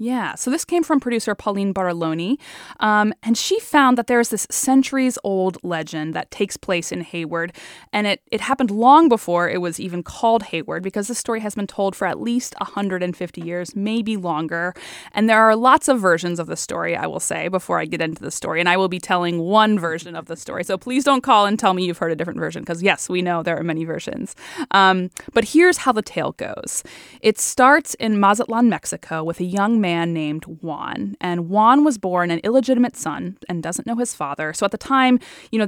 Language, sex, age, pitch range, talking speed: English, female, 20-39, 175-230 Hz, 220 wpm